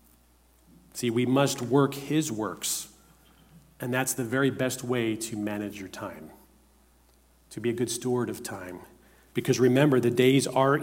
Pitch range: 95-130 Hz